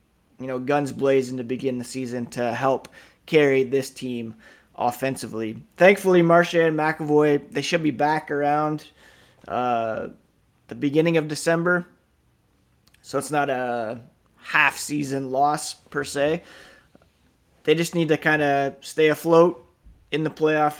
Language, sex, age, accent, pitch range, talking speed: English, male, 20-39, American, 120-145 Hz, 135 wpm